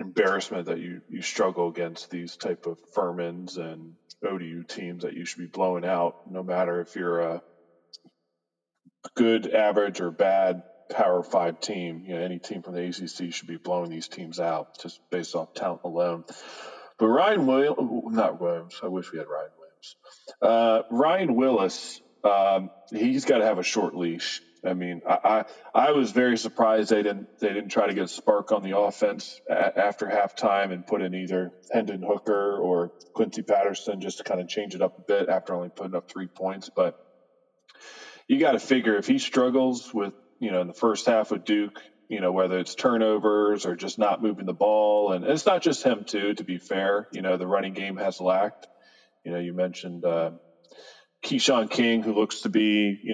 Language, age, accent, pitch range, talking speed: English, 20-39, American, 85-105 Hz, 195 wpm